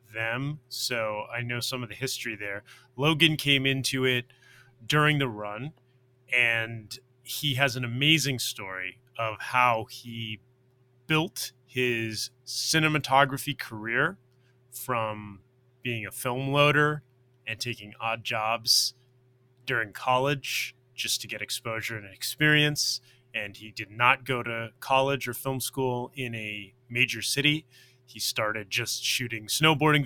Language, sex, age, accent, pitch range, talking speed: English, male, 30-49, American, 115-135 Hz, 130 wpm